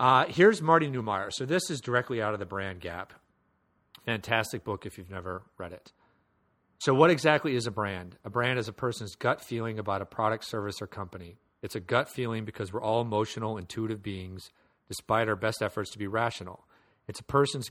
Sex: male